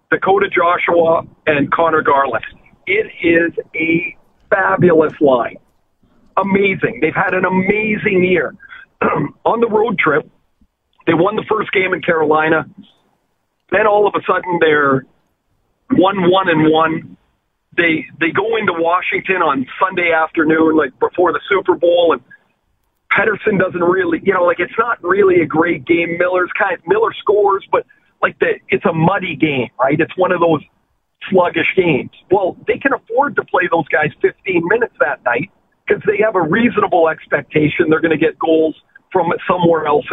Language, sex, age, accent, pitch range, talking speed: English, male, 40-59, American, 160-205 Hz, 160 wpm